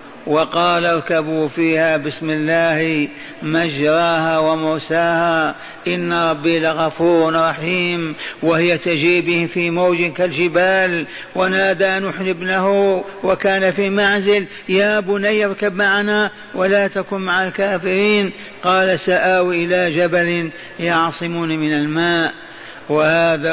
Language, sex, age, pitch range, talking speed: Arabic, male, 50-69, 165-195 Hz, 95 wpm